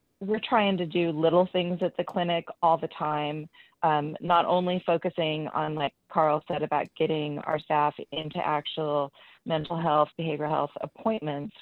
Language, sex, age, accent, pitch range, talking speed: English, female, 30-49, American, 155-180 Hz, 160 wpm